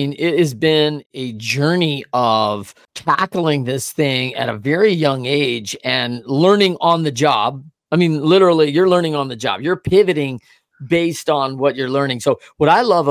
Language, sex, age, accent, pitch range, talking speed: English, male, 40-59, American, 135-165 Hz, 175 wpm